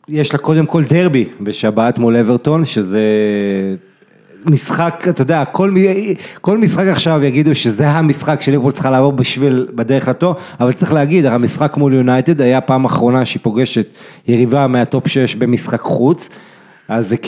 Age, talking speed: 30-49, 140 wpm